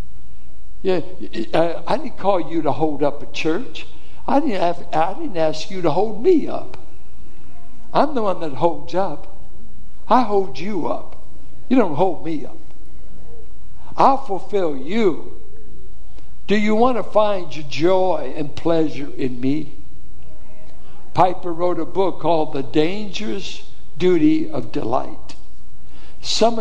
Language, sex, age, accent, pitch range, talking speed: English, male, 60-79, American, 145-210 Hz, 140 wpm